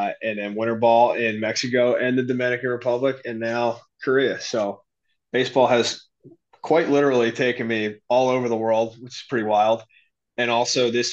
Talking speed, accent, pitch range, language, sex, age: 165 wpm, American, 115-130 Hz, English, male, 20-39